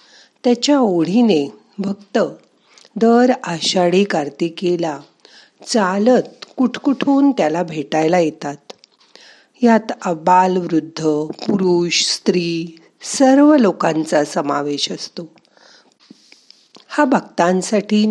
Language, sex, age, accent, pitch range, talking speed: Marathi, female, 50-69, native, 170-240 Hz, 75 wpm